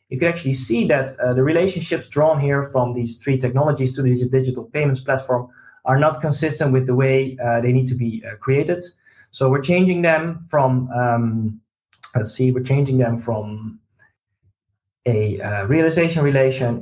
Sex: male